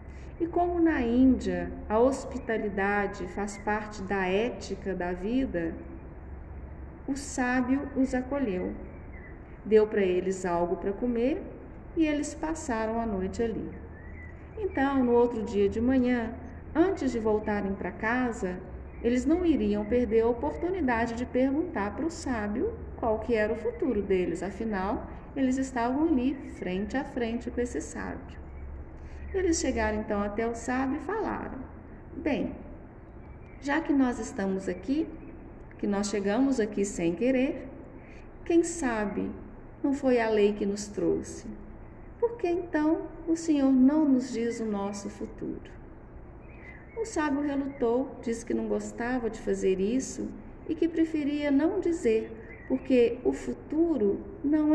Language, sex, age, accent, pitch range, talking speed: Portuguese, female, 40-59, Brazilian, 200-275 Hz, 135 wpm